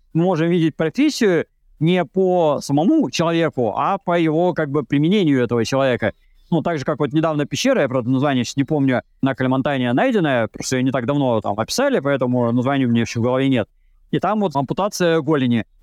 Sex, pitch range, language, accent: male, 135-175 Hz, Russian, native